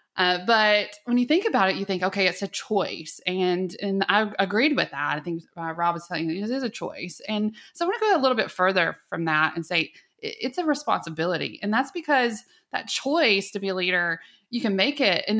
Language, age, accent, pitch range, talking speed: English, 20-39, American, 165-210 Hz, 240 wpm